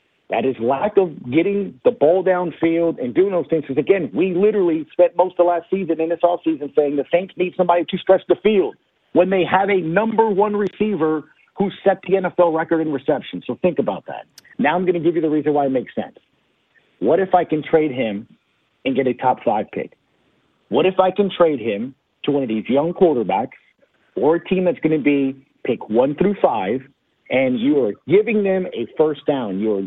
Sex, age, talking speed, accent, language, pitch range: male, 50-69, 215 wpm, American, English, 145-185 Hz